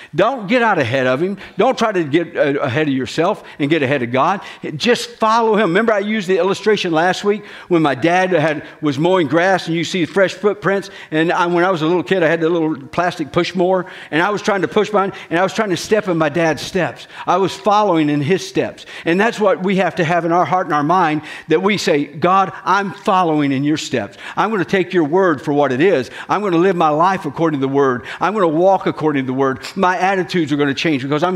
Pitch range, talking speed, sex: 145-190 Hz, 255 wpm, male